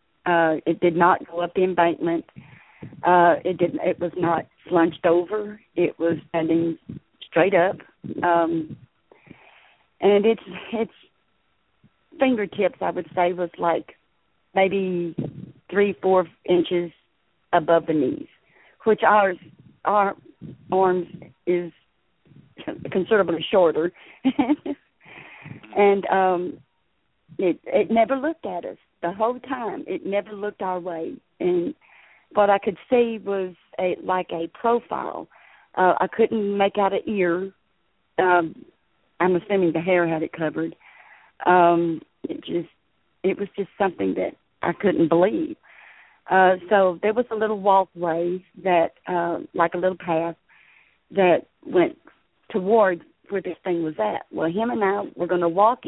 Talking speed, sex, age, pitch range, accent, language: 135 wpm, female, 40-59, 170-210 Hz, American, English